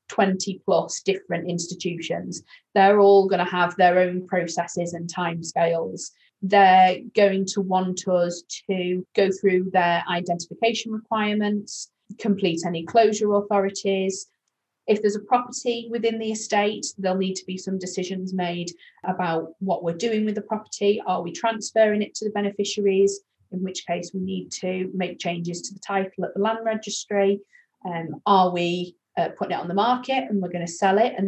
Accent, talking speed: British, 170 wpm